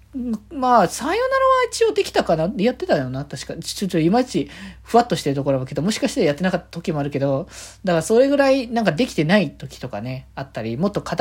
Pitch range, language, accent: 135-215 Hz, Japanese, native